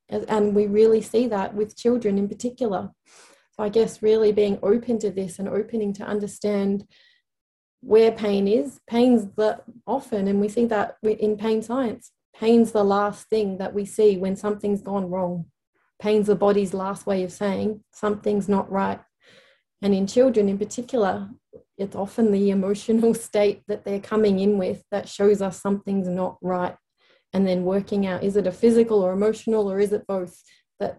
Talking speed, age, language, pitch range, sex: 175 wpm, 30-49, English, 195-215 Hz, female